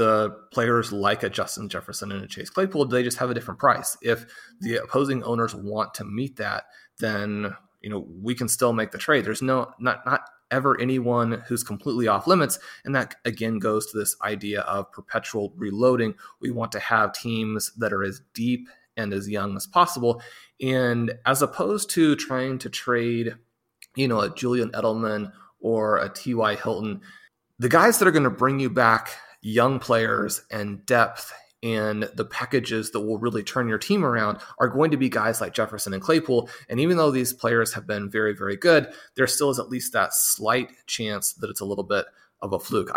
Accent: American